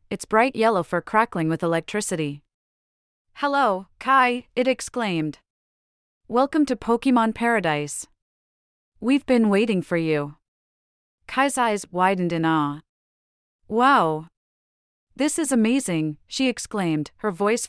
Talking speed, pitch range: 110 wpm, 160-225 Hz